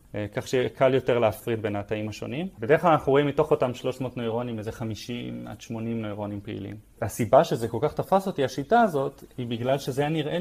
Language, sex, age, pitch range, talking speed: Hebrew, male, 20-39, 115-150 Hz, 195 wpm